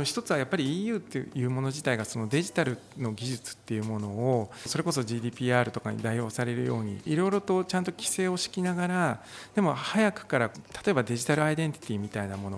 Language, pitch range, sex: Japanese, 115-160 Hz, male